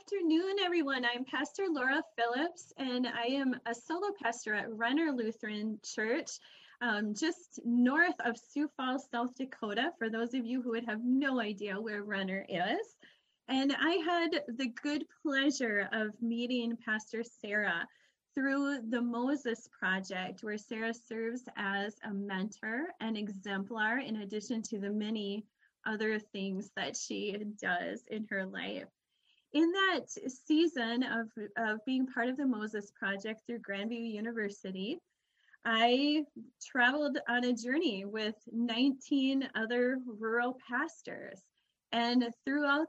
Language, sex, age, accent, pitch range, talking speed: English, female, 20-39, American, 215-270 Hz, 135 wpm